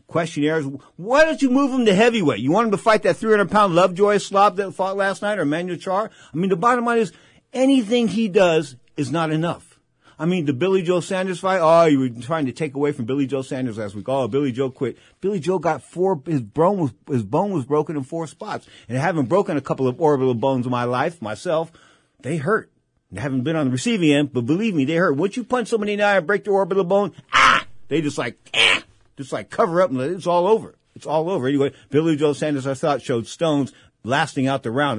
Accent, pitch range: American, 135-190 Hz